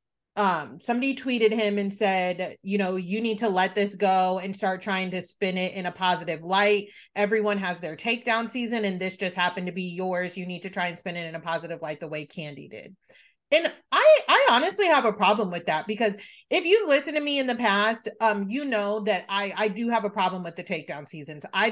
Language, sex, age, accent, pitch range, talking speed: English, female, 30-49, American, 185-230 Hz, 235 wpm